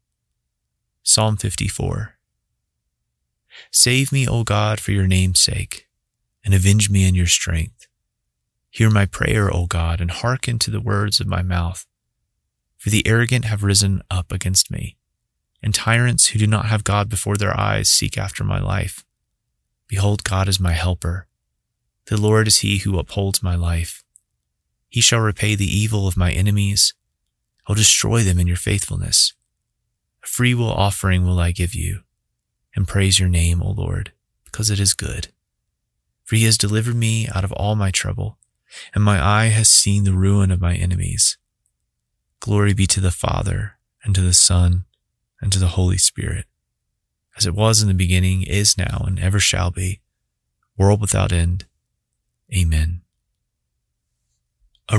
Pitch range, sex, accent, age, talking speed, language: 90-110 Hz, male, American, 30-49, 160 wpm, English